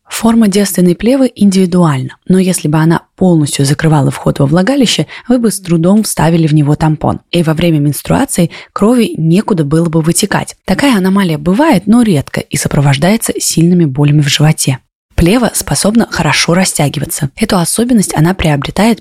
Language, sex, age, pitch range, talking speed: Russian, female, 20-39, 155-200 Hz, 155 wpm